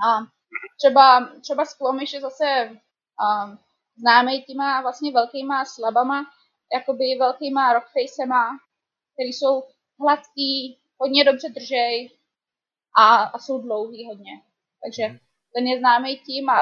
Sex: female